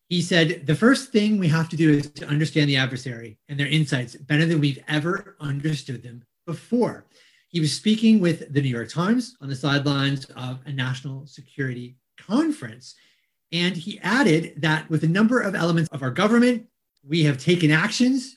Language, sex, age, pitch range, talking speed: English, male, 30-49, 140-185 Hz, 185 wpm